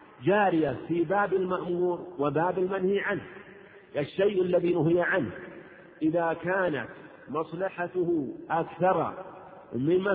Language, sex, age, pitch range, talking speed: Arabic, male, 50-69, 155-185 Hz, 95 wpm